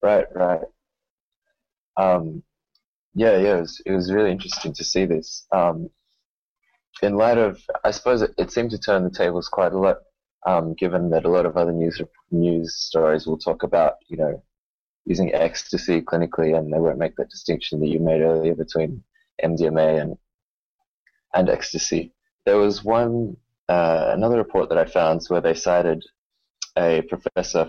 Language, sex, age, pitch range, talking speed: English, male, 20-39, 85-105 Hz, 165 wpm